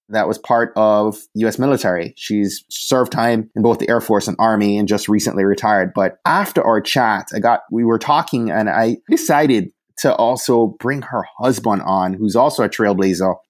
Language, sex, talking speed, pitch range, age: English, male, 185 wpm, 110-130 Hz, 30-49